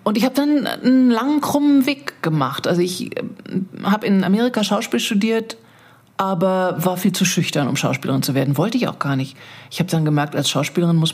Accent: German